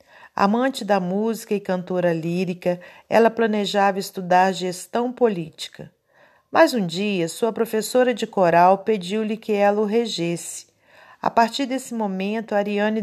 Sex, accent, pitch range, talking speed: female, Brazilian, 185-225 Hz, 130 wpm